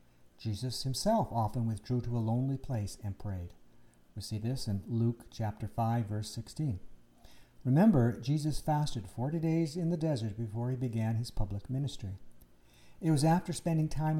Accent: American